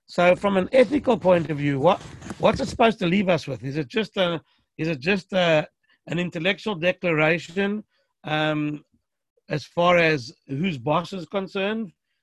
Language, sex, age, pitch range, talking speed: English, male, 60-79, 145-185 Hz, 170 wpm